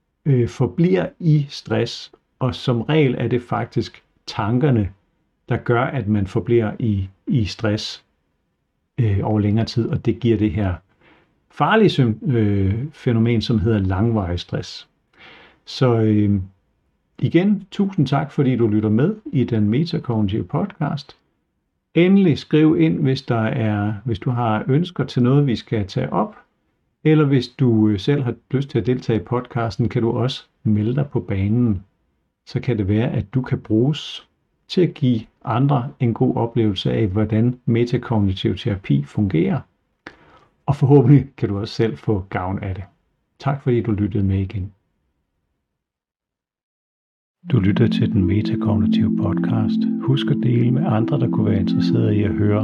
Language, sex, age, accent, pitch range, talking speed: Danish, male, 50-69, native, 105-135 Hz, 155 wpm